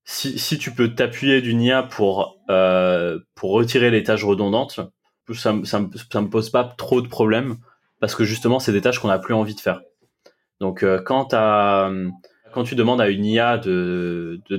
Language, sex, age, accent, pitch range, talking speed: French, male, 20-39, French, 105-125 Hz, 200 wpm